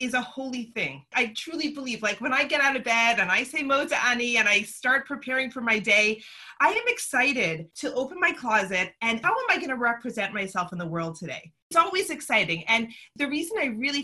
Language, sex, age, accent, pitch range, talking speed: English, female, 30-49, American, 200-260 Hz, 225 wpm